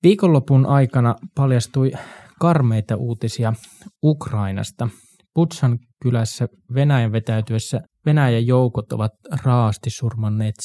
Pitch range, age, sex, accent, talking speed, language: 110-135 Hz, 20-39, male, native, 85 wpm, Finnish